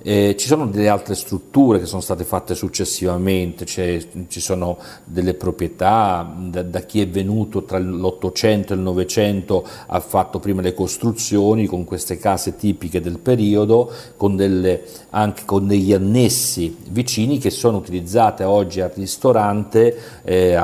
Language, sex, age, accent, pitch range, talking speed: Italian, male, 50-69, native, 90-105 Hz, 150 wpm